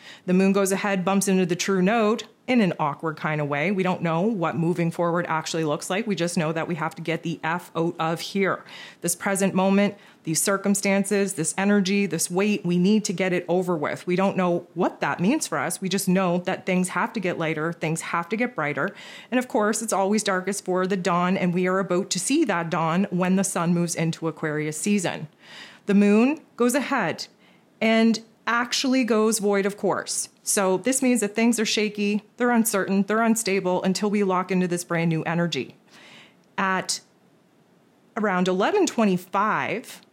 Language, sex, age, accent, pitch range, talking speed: English, female, 30-49, American, 175-215 Hz, 195 wpm